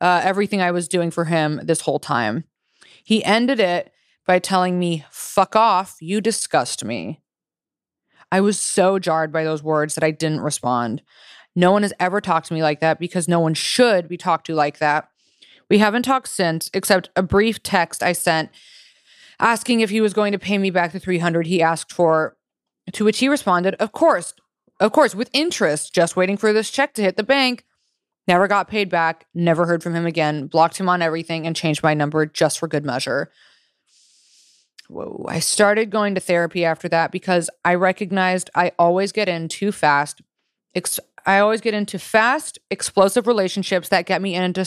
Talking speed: 190 wpm